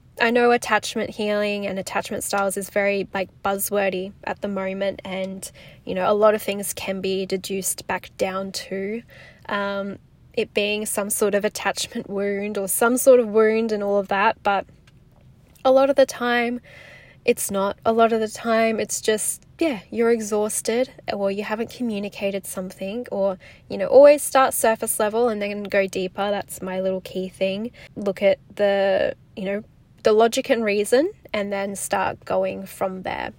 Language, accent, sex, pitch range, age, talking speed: English, Australian, female, 190-225 Hz, 10-29, 175 wpm